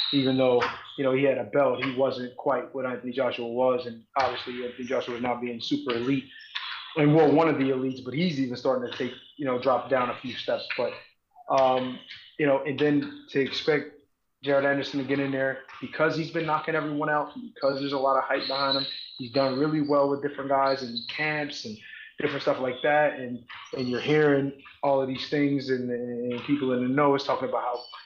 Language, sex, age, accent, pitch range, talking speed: English, male, 20-39, American, 130-150 Hz, 220 wpm